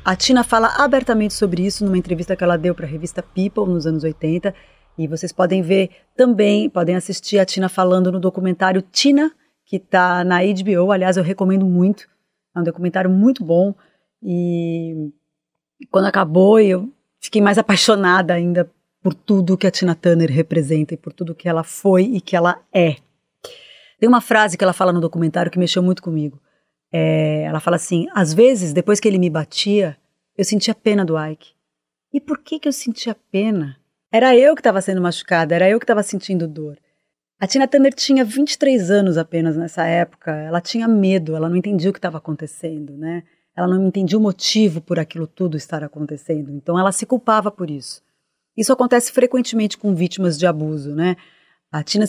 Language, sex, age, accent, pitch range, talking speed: Portuguese, female, 30-49, Brazilian, 170-210 Hz, 190 wpm